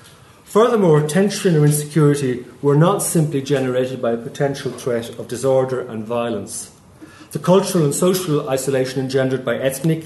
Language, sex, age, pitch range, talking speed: English, male, 40-59, 125-150 Hz, 145 wpm